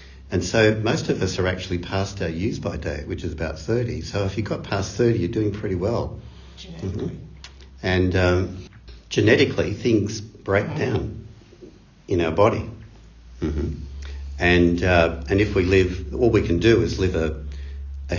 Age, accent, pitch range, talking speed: 60-79, Australian, 70-95 Hz, 160 wpm